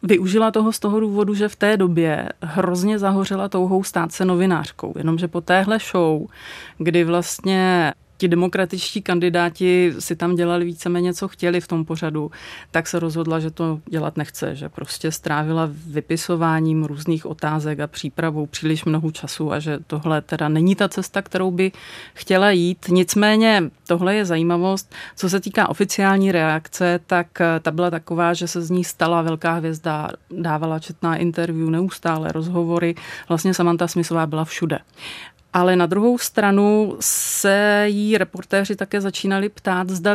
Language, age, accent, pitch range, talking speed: Czech, 30-49, native, 165-190 Hz, 155 wpm